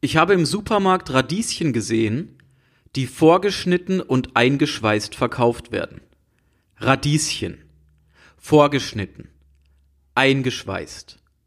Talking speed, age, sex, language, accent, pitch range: 80 wpm, 40-59, male, German, German, 110-155 Hz